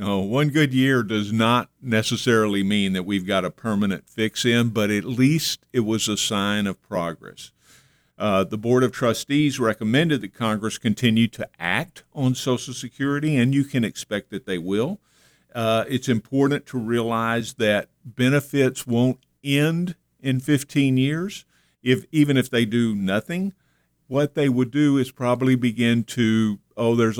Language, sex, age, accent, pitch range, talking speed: English, male, 50-69, American, 105-130 Hz, 160 wpm